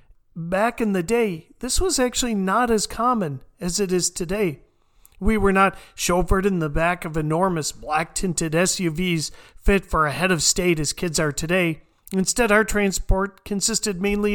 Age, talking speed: 40-59, 165 wpm